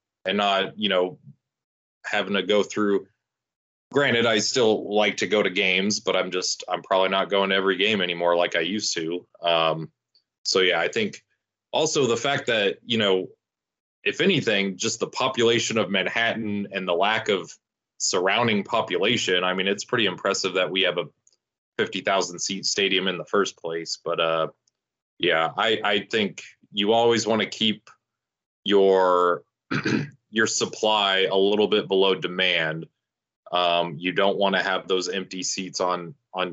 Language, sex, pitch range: English, male, 85-100 Hz